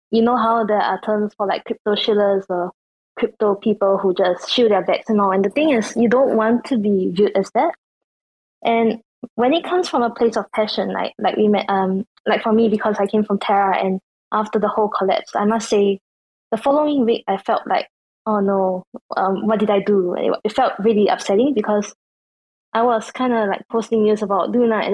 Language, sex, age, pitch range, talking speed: English, female, 20-39, 195-230 Hz, 215 wpm